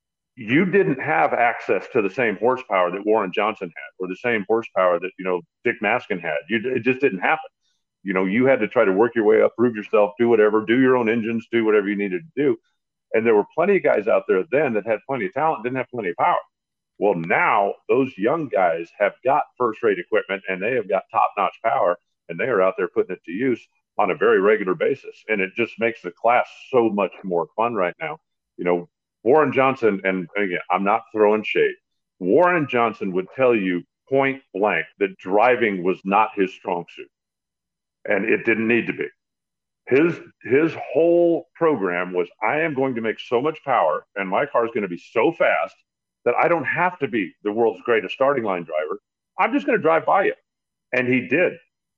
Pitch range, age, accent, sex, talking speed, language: 105-180 Hz, 50-69, American, male, 215 wpm, English